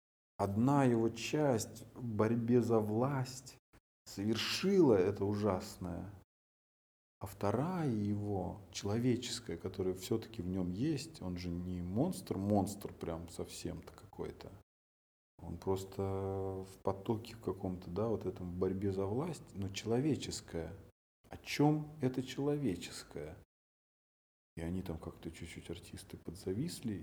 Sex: male